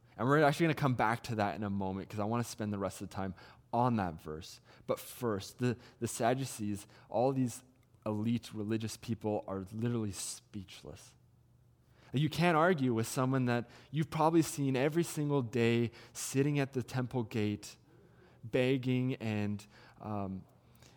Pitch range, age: 110-125 Hz, 20-39